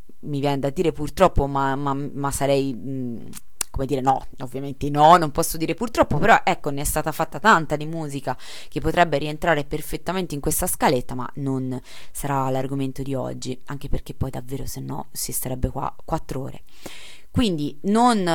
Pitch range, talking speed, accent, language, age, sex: 135-170 Hz, 175 wpm, native, Italian, 20-39, female